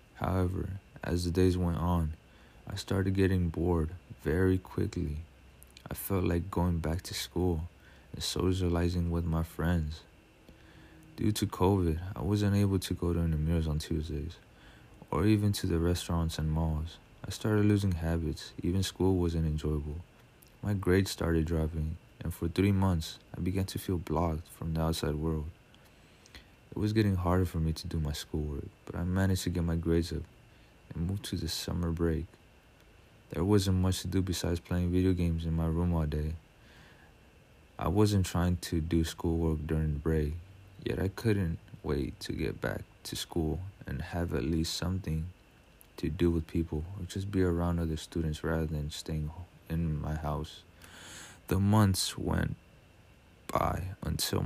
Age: 30-49